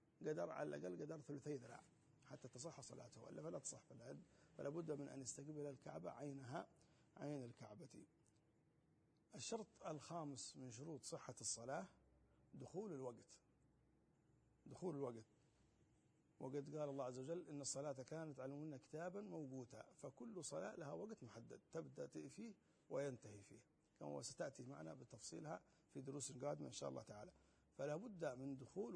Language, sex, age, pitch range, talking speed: Arabic, male, 50-69, 130-170 Hz, 135 wpm